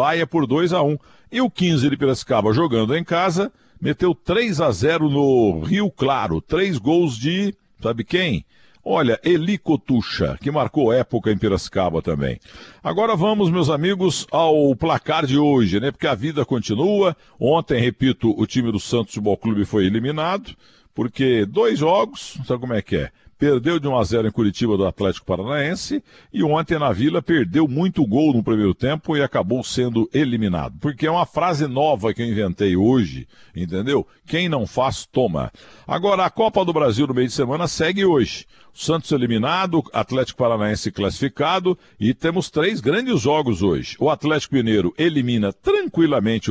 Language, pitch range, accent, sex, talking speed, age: Portuguese, 115-170 Hz, Brazilian, male, 170 wpm, 60-79